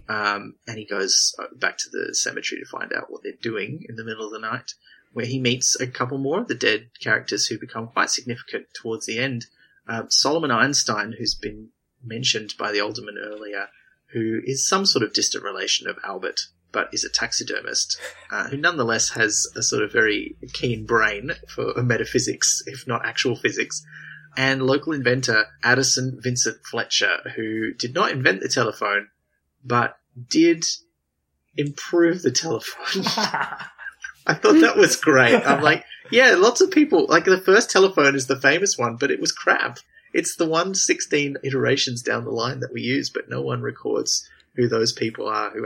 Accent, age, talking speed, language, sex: Australian, 30-49, 175 wpm, English, male